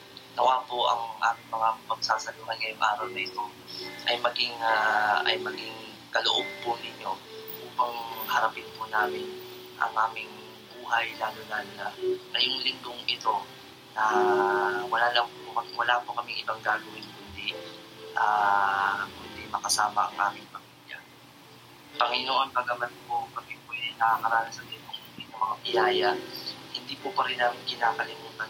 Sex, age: male, 20-39